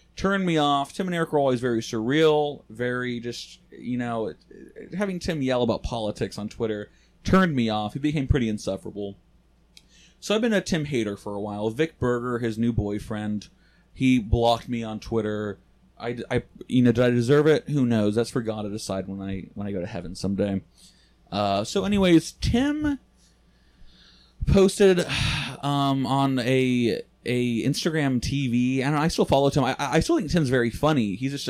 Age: 30-49